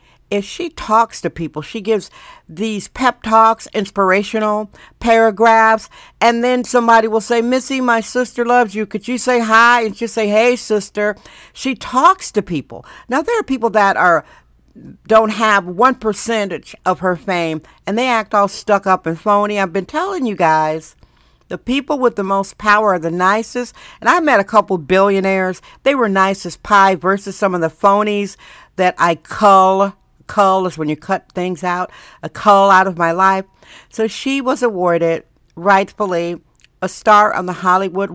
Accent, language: American, English